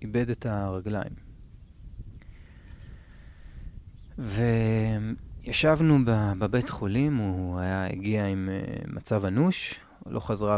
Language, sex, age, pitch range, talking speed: Hebrew, male, 30-49, 105-135 Hz, 80 wpm